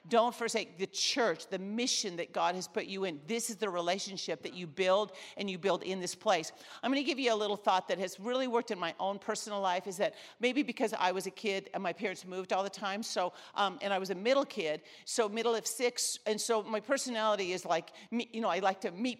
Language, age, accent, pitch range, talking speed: English, 50-69, American, 185-230 Hz, 255 wpm